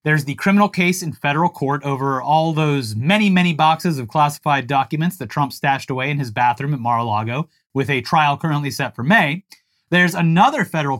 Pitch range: 140-180 Hz